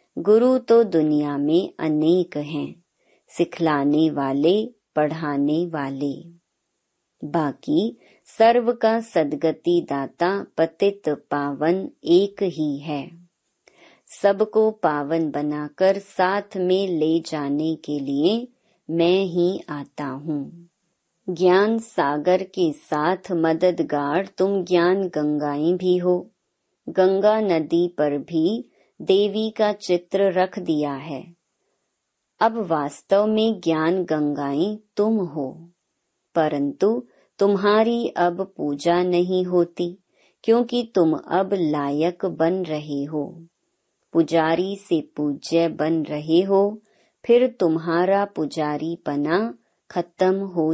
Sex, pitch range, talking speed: male, 150-195 Hz, 100 wpm